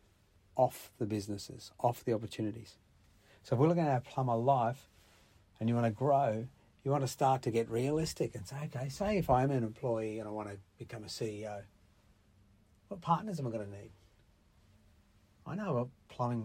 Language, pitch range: English, 100-130 Hz